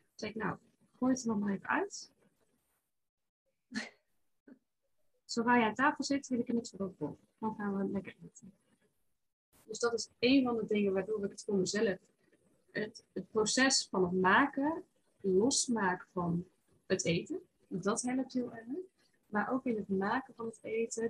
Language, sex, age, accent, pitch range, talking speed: Dutch, female, 30-49, Dutch, 175-225 Hz, 170 wpm